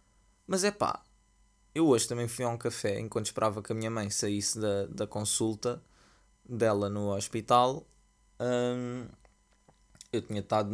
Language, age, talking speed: Portuguese, 20-39, 150 wpm